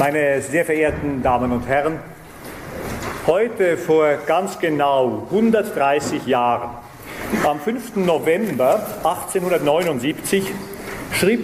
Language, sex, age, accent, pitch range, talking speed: German, male, 40-59, German, 145-200 Hz, 90 wpm